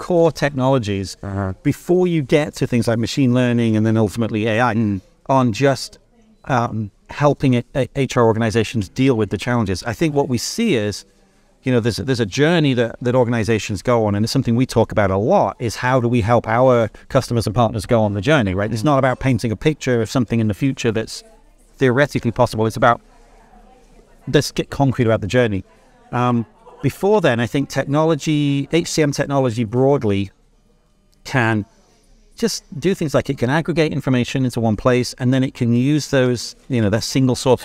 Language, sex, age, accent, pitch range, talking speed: English, male, 40-59, British, 115-140 Hz, 190 wpm